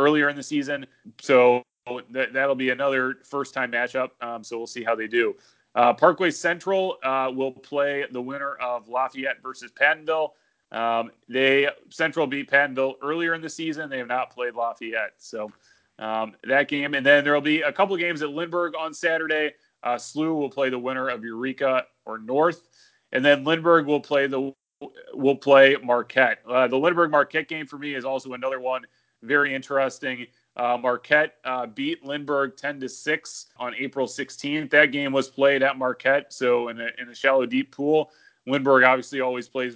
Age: 30-49